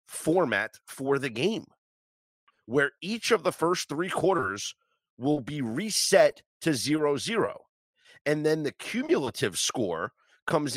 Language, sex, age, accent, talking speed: English, male, 30-49, American, 130 wpm